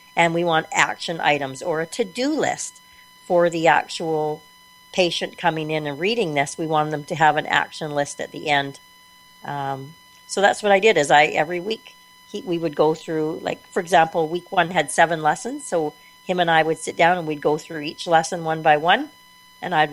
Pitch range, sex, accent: 155-200 Hz, female, American